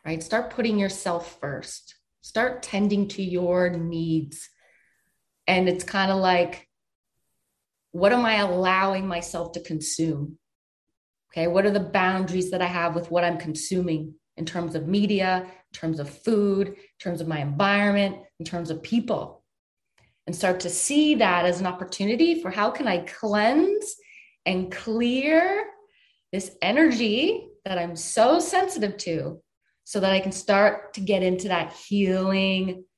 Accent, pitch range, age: American, 175-225 Hz, 30-49